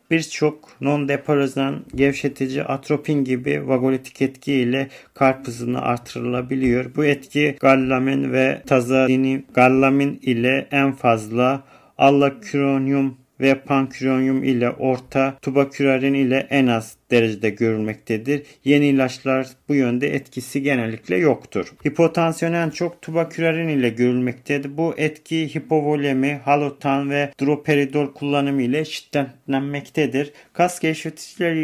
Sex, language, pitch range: male, Turkish, 130-145 Hz